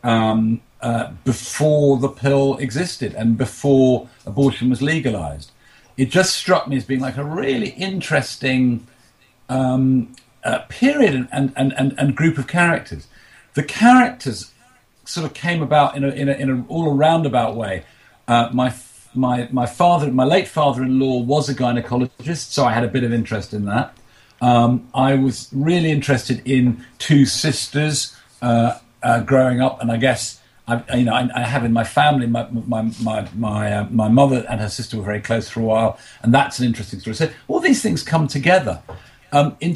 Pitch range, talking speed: 115-140 Hz, 180 wpm